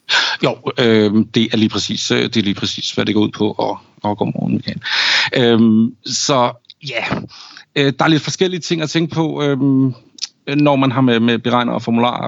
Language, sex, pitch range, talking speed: Danish, male, 110-135 Hz, 195 wpm